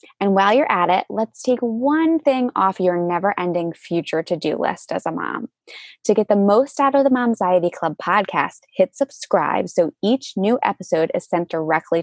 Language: English